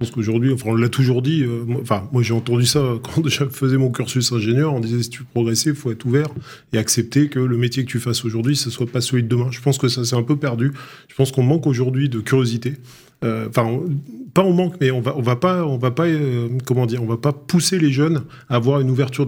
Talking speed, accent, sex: 270 wpm, French, male